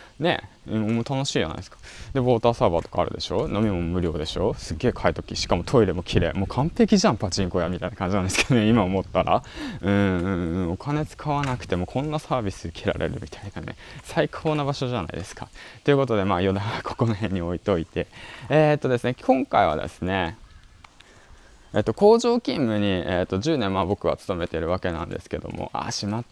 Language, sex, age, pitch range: Japanese, male, 20-39, 90-120 Hz